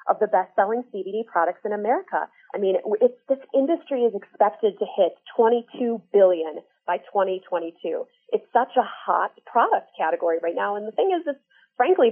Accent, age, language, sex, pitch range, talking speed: American, 30-49, English, female, 185-260 Hz, 175 wpm